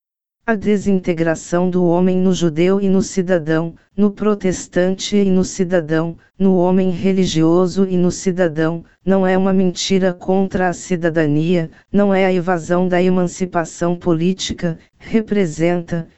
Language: Portuguese